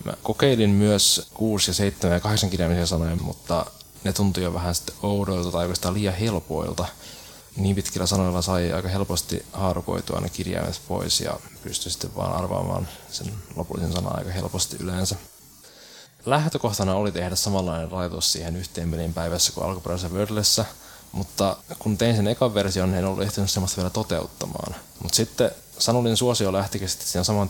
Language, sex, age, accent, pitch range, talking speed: Finnish, male, 20-39, native, 85-100 Hz, 155 wpm